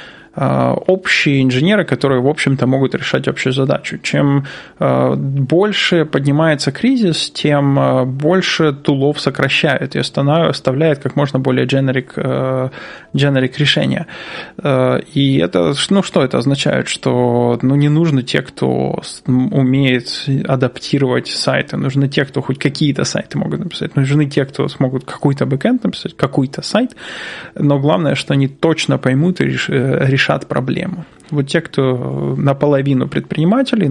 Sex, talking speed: male, 125 wpm